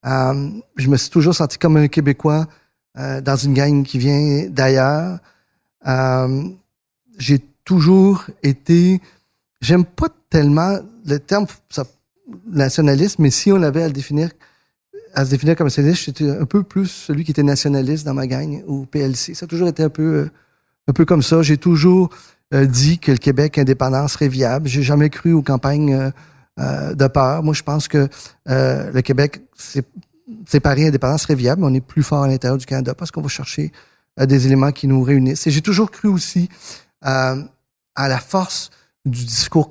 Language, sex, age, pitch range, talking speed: French, male, 40-59, 135-165 Hz, 185 wpm